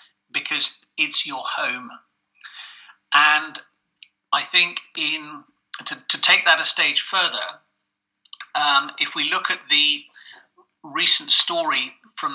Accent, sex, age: British, male, 40-59